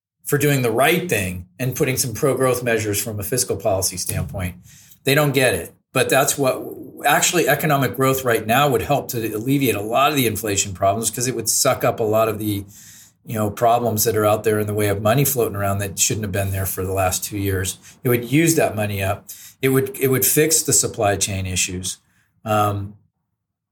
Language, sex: English, male